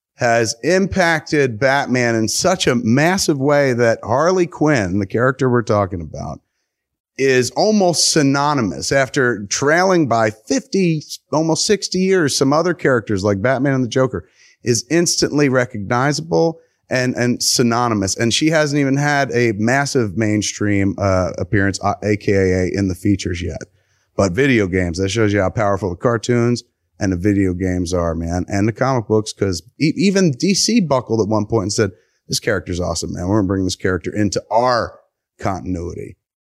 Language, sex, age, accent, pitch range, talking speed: English, male, 30-49, American, 105-150 Hz, 160 wpm